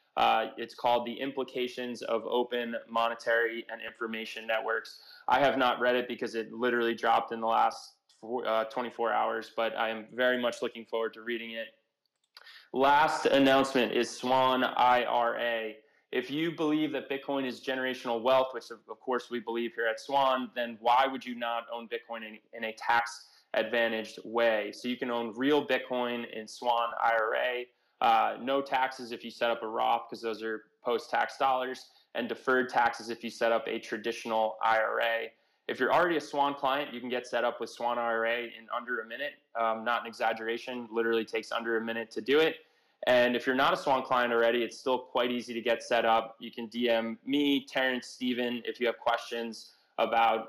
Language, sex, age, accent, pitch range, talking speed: English, male, 20-39, American, 115-125 Hz, 190 wpm